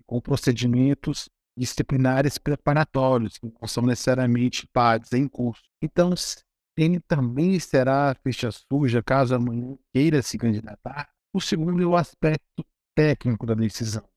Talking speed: 130 wpm